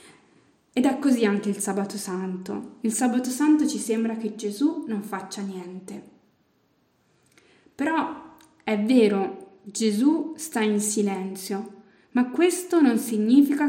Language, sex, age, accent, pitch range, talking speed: Italian, female, 20-39, native, 200-275 Hz, 125 wpm